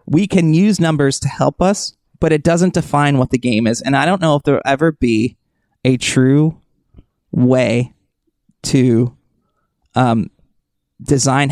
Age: 20-39